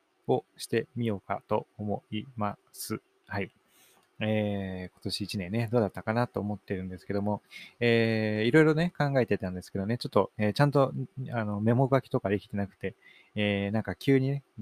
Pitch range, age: 100-125 Hz, 20-39